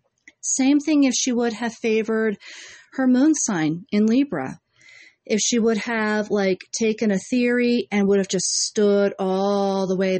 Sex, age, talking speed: female, 40-59, 165 wpm